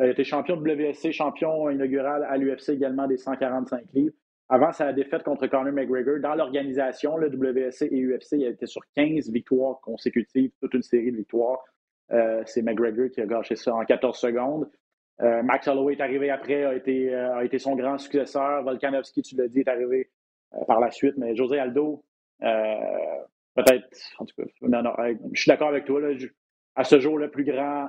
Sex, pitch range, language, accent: male, 125-150 Hz, French, Canadian